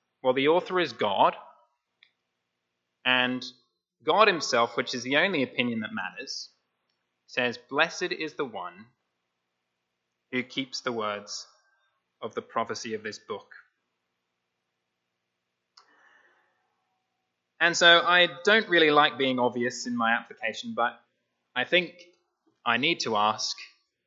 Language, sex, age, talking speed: English, male, 20-39, 120 wpm